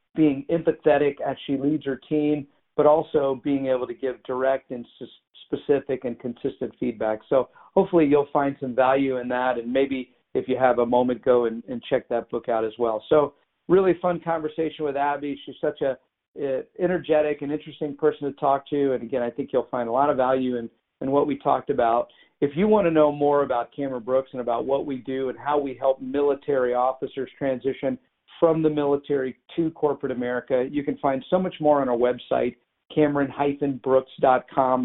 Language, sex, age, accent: English, male, 50-69, American